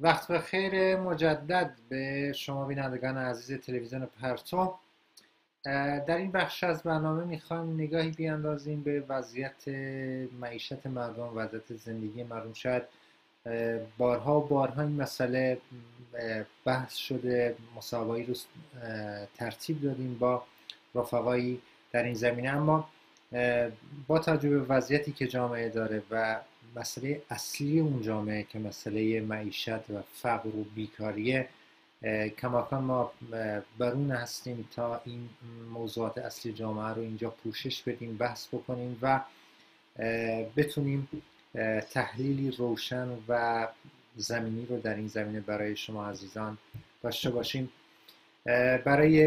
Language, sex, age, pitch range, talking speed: Persian, male, 30-49, 115-140 Hz, 115 wpm